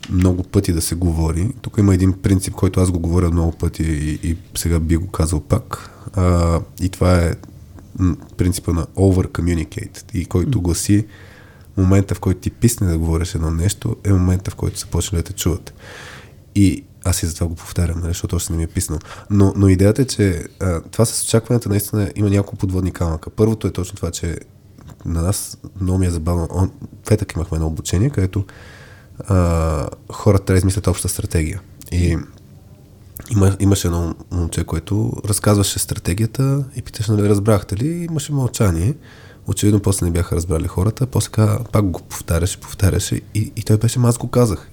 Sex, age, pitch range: male, 20-39, 90-105 Hz